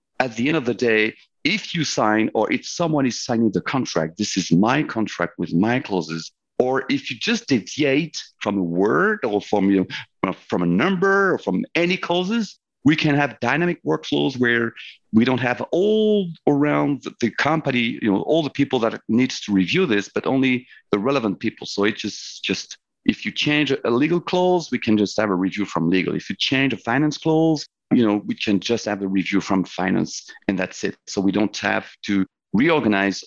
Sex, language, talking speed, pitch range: male, English, 205 wpm, 105-160 Hz